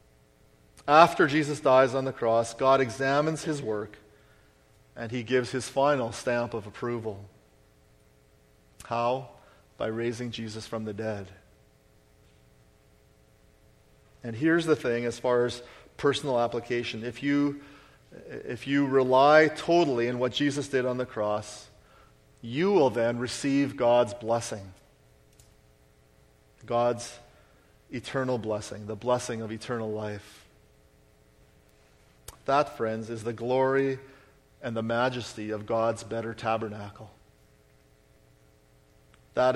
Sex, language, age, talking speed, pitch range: male, English, 40-59, 110 wpm, 105-130 Hz